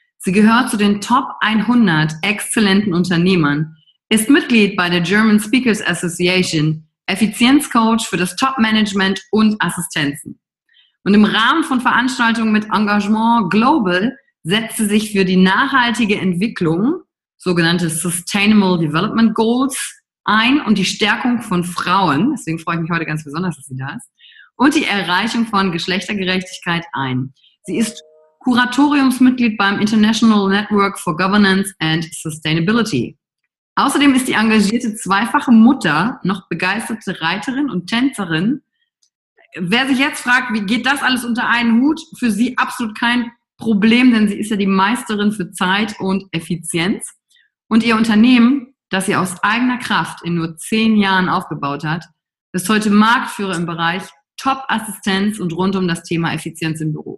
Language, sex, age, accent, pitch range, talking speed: German, female, 30-49, German, 180-235 Hz, 145 wpm